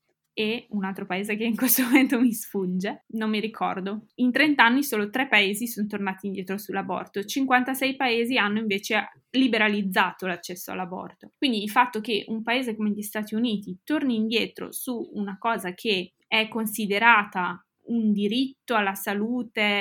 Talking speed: 160 wpm